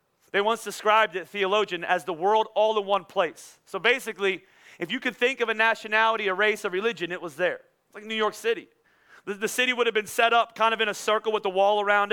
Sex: male